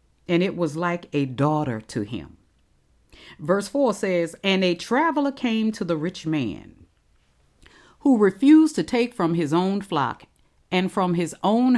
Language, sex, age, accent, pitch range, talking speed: English, female, 40-59, American, 160-245 Hz, 160 wpm